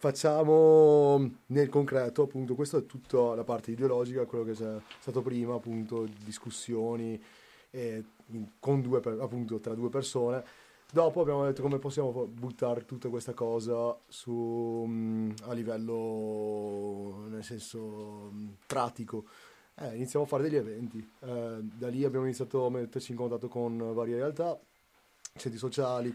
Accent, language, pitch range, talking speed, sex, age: native, Italian, 115-130 Hz, 135 wpm, male, 30-49